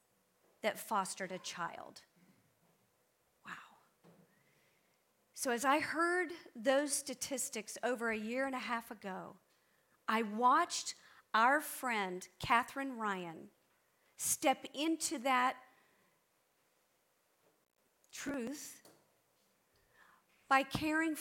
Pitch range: 215-275 Hz